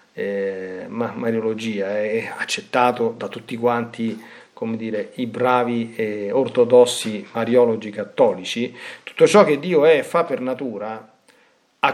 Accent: native